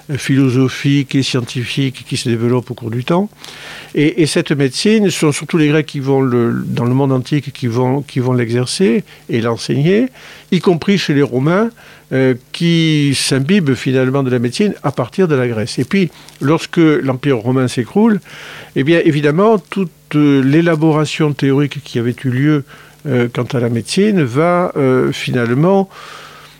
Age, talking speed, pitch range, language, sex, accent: 50-69, 165 wpm, 125-160 Hz, French, male, French